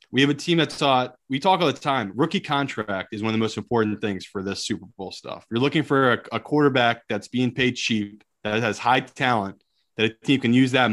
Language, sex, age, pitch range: English, male, 30-49, 105-135 Hz